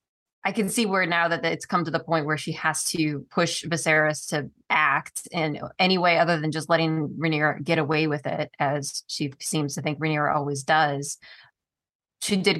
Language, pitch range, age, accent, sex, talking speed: English, 155-185 Hz, 20-39, American, female, 195 wpm